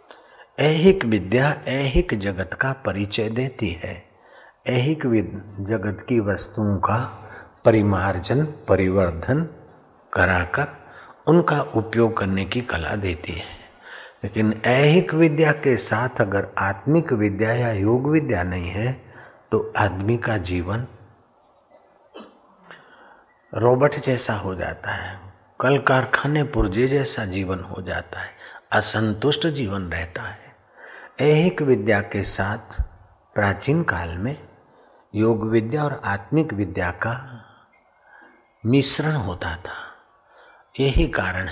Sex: male